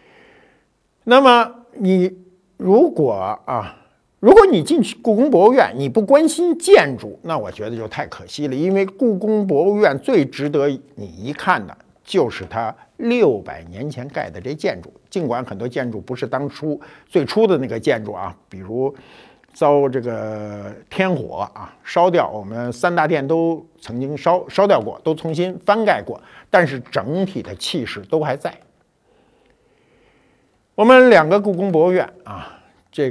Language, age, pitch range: Chinese, 50-69, 130-205 Hz